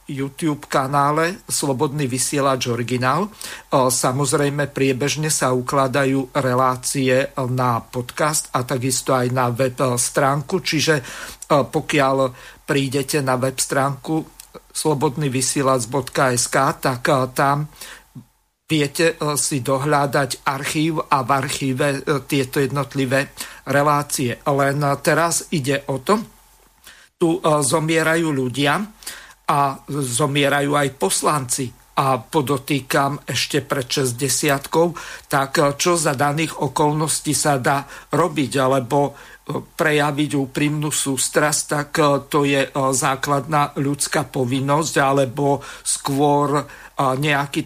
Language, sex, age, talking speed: Slovak, male, 50-69, 95 wpm